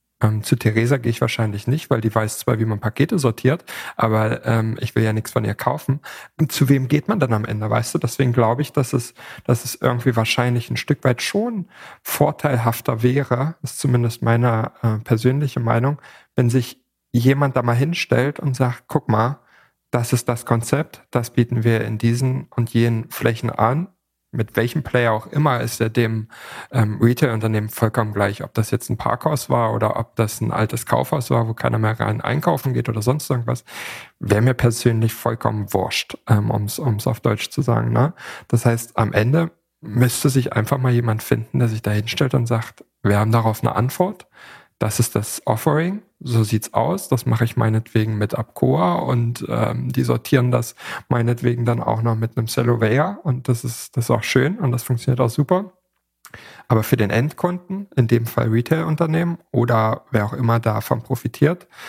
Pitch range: 115-135 Hz